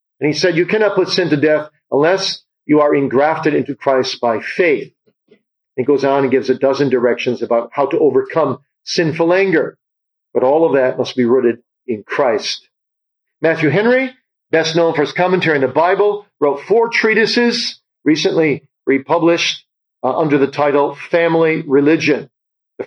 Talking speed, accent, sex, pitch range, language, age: 165 wpm, American, male, 140-180 Hz, English, 50-69